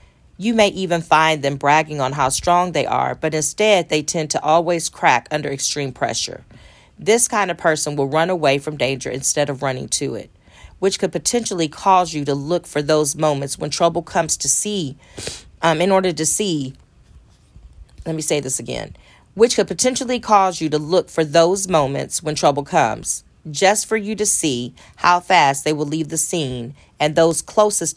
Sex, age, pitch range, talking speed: female, 40-59, 140-175 Hz, 190 wpm